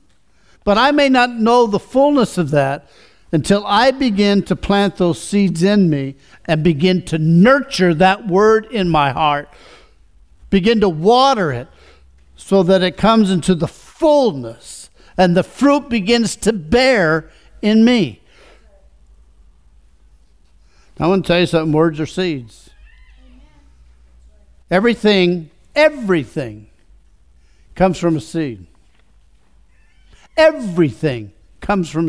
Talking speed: 120 wpm